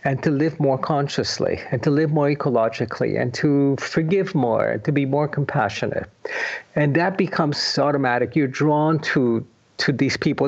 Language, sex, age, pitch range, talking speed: English, male, 50-69, 140-185 Hz, 160 wpm